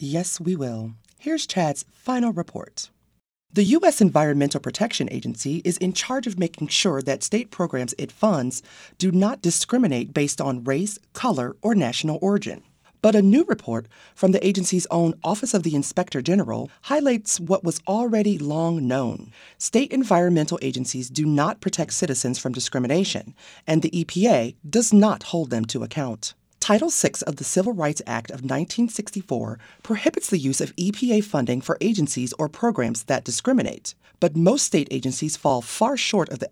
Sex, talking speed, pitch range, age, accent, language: female, 165 wpm, 135-205 Hz, 30-49, American, English